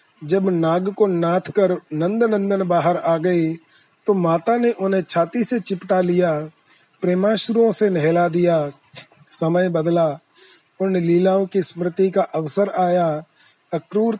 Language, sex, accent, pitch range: Hindi, male, native, 170-200 Hz